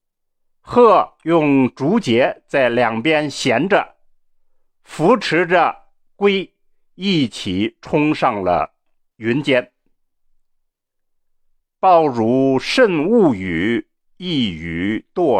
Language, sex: Chinese, male